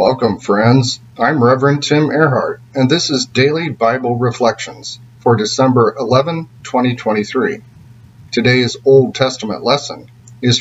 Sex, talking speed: male, 120 wpm